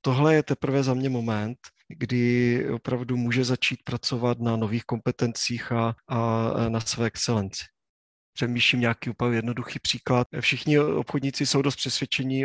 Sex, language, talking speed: male, Czech, 140 wpm